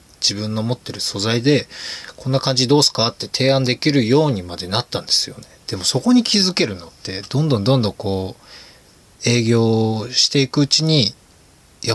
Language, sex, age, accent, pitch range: Japanese, male, 20-39, native, 100-145 Hz